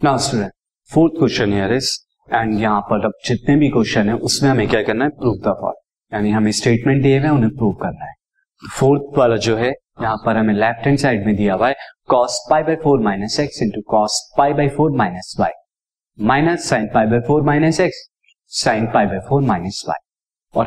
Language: Hindi